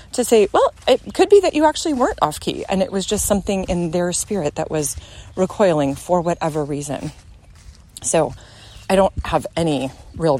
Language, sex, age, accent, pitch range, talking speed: English, female, 30-49, American, 165-235 Hz, 180 wpm